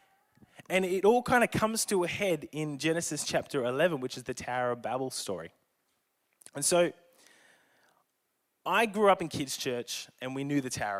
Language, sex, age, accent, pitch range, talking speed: English, male, 20-39, Australian, 125-190 Hz, 180 wpm